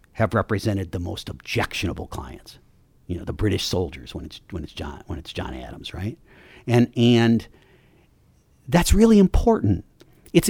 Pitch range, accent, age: 95-125 Hz, American, 60-79